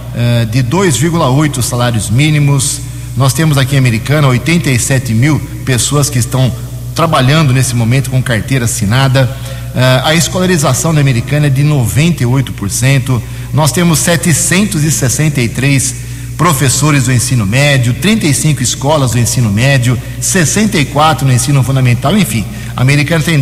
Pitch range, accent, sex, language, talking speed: 125-150 Hz, Brazilian, male, Portuguese, 120 wpm